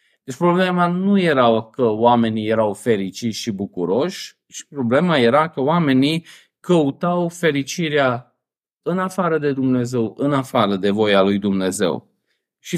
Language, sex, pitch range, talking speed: Romanian, male, 115-150 Hz, 130 wpm